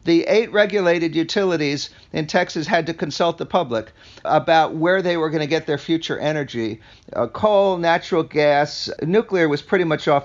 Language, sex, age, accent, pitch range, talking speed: English, male, 50-69, American, 145-195 Hz, 175 wpm